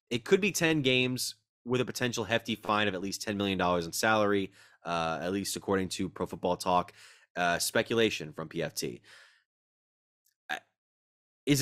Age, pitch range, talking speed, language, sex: 20-39, 95-120 Hz, 155 wpm, English, male